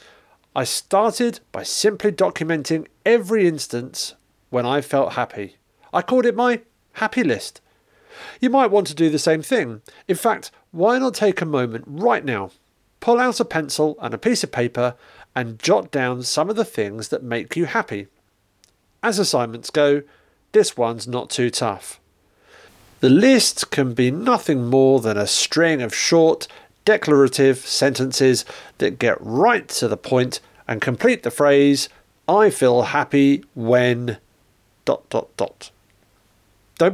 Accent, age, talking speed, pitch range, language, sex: British, 40-59, 150 wpm, 125-205 Hz, English, male